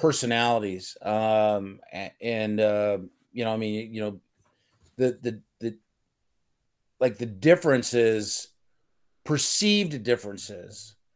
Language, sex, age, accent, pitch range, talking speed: English, male, 40-59, American, 110-130 Hz, 95 wpm